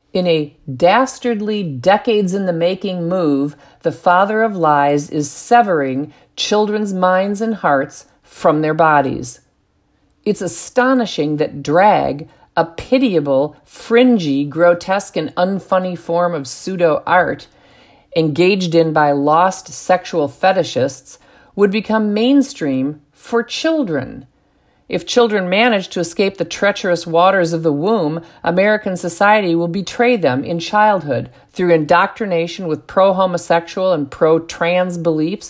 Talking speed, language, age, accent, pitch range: 115 wpm, English, 50-69, American, 160-205 Hz